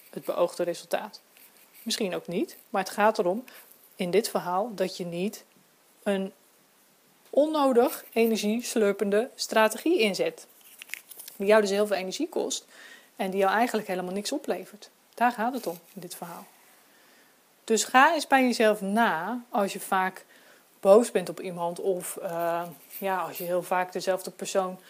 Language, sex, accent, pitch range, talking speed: Dutch, female, Dutch, 185-240 Hz, 155 wpm